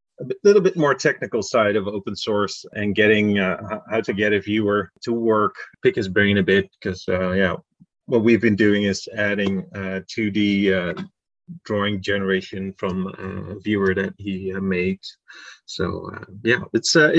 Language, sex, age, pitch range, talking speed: English, male, 30-49, 100-125 Hz, 180 wpm